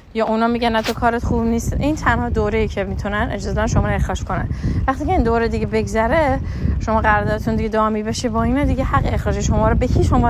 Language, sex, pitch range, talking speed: Persian, female, 215-280 Hz, 220 wpm